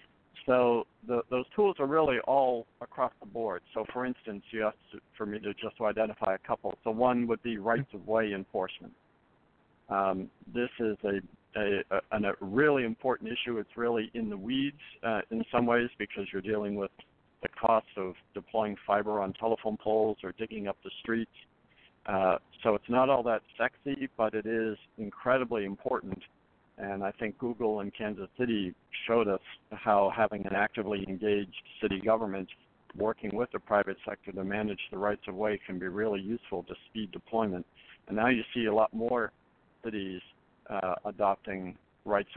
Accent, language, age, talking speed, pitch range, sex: American, English, 60-79, 175 wpm, 100-115 Hz, male